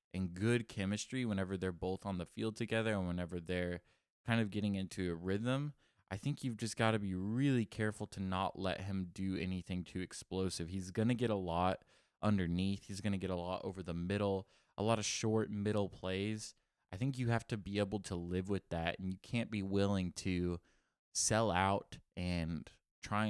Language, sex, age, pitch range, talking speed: English, male, 20-39, 90-105 Hz, 205 wpm